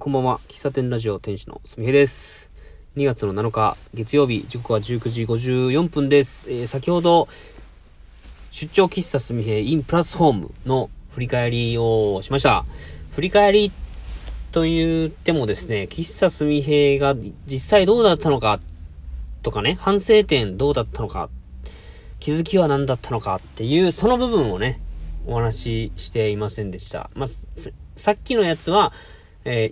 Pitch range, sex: 105-155 Hz, male